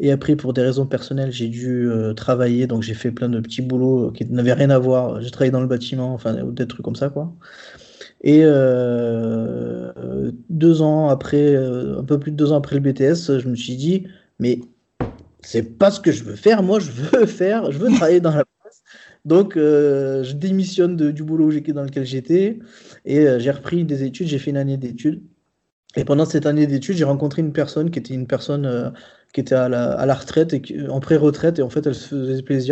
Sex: male